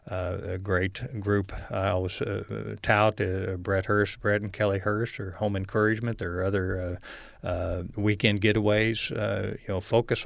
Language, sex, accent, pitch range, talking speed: English, male, American, 95-105 Hz, 165 wpm